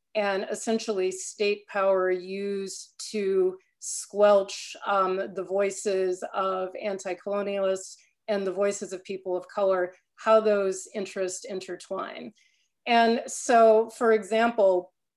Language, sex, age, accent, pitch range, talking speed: English, female, 30-49, American, 190-220 Hz, 105 wpm